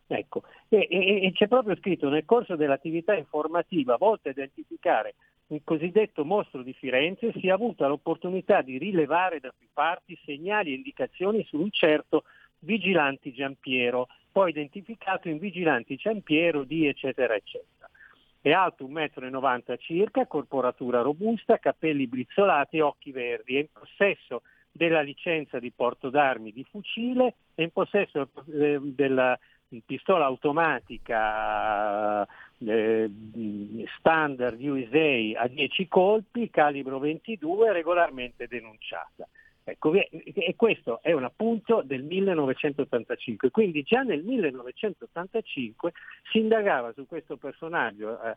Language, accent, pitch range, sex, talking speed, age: Italian, native, 135-200 Hz, male, 125 wpm, 50-69